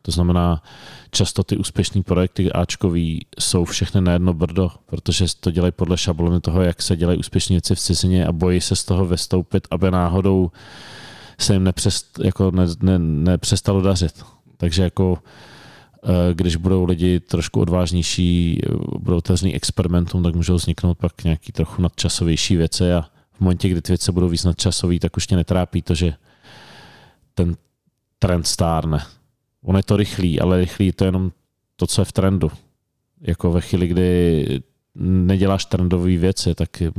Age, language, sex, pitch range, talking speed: 30-49, Czech, male, 85-95 Hz, 150 wpm